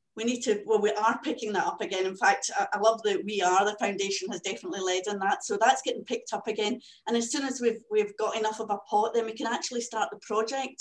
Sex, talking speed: female, 265 wpm